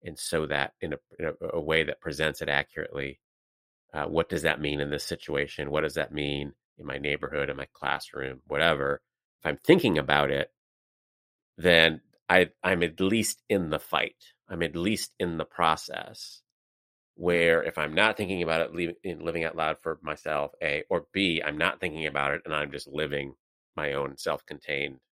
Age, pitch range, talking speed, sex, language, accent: 30-49, 70-80 Hz, 180 wpm, male, English, American